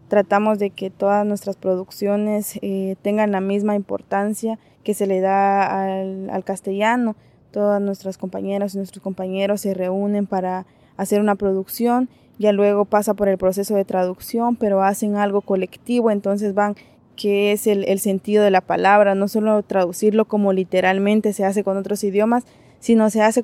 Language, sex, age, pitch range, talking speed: English, female, 20-39, 195-220 Hz, 165 wpm